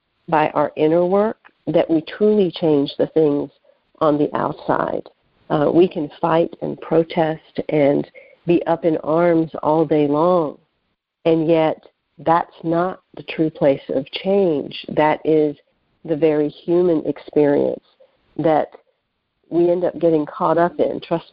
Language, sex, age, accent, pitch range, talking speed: English, female, 50-69, American, 155-180 Hz, 145 wpm